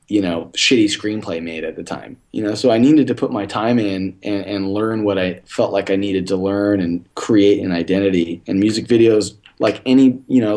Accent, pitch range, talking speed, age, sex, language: American, 100-130 Hz, 225 wpm, 20-39, male, English